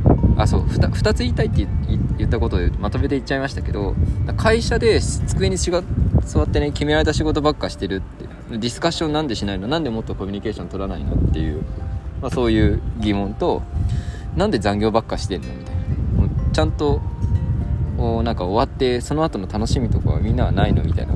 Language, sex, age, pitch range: Japanese, male, 20-39, 90-110 Hz